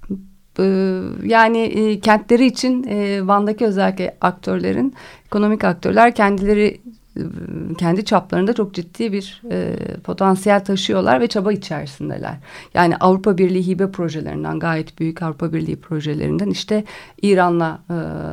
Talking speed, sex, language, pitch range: 115 wpm, female, Turkish, 165-200 Hz